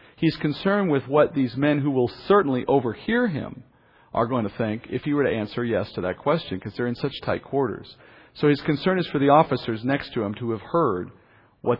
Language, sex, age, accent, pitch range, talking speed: English, male, 50-69, American, 115-165 Hz, 225 wpm